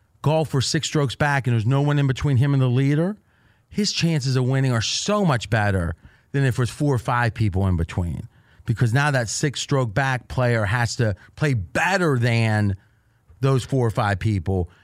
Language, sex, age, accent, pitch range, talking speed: English, male, 30-49, American, 115-145 Hz, 195 wpm